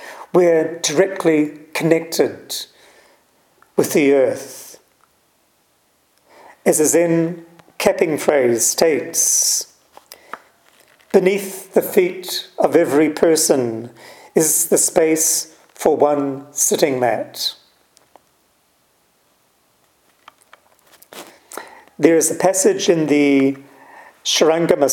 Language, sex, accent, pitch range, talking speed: English, male, British, 135-175 Hz, 75 wpm